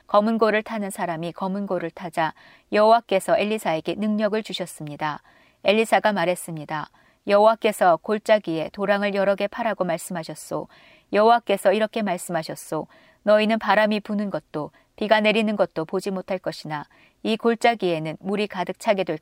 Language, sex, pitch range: Korean, female, 175-215 Hz